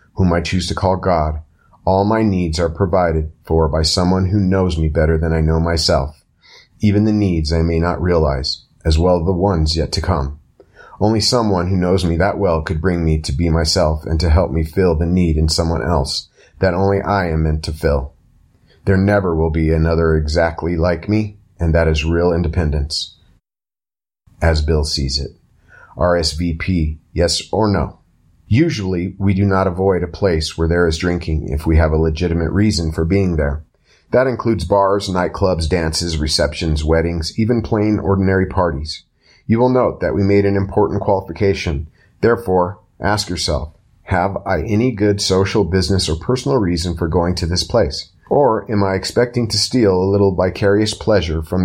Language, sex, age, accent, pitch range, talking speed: English, male, 30-49, American, 80-100 Hz, 180 wpm